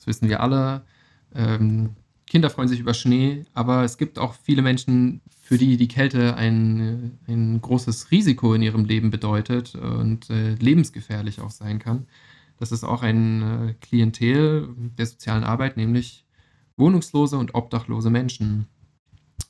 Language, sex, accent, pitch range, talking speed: German, male, German, 115-135 Hz, 140 wpm